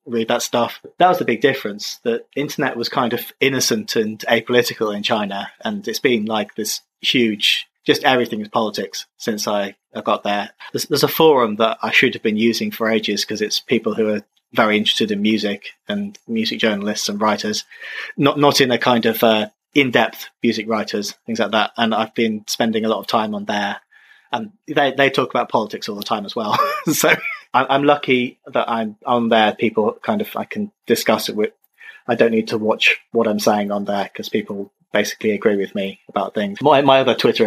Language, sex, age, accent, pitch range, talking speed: English, male, 30-49, British, 105-140 Hz, 210 wpm